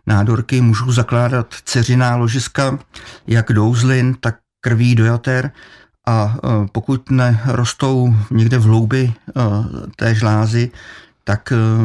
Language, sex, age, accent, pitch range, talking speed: Czech, male, 50-69, native, 105-125 Hz, 95 wpm